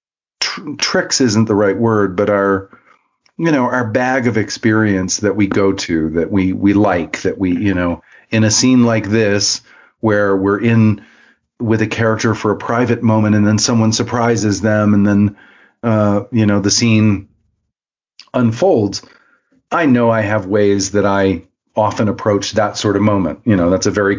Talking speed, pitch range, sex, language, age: 175 wpm, 95-110 Hz, male, English, 40-59